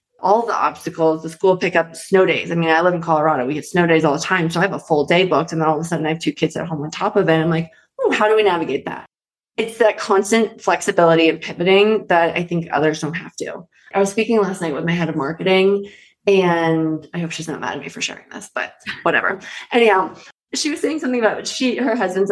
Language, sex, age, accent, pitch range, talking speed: English, female, 20-39, American, 160-205 Hz, 260 wpm